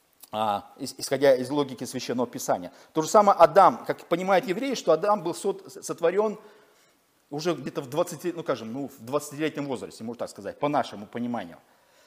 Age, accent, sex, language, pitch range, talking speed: 40-59, native, male, Russian, 155-205 Hz, 165 wpm